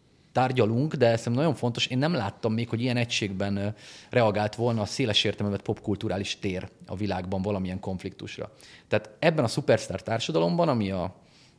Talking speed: 155 wpm